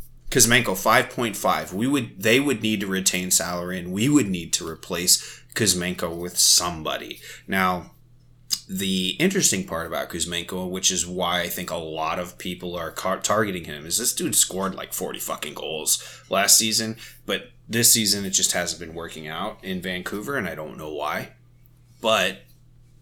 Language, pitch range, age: English, 90-120 Hz, 30-49